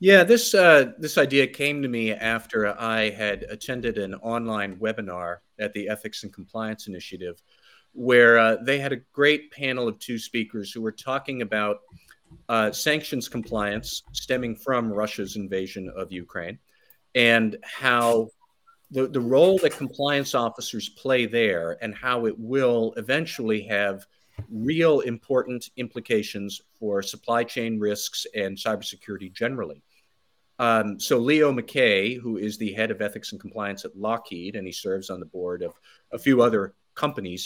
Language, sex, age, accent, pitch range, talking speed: English, male, 50-69, American, 105-135 Hz, 150 wpm